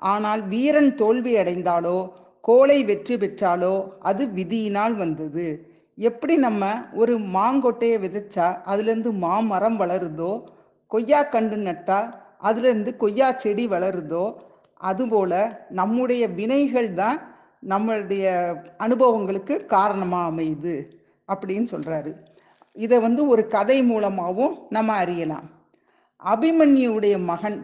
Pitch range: 185-245 Hz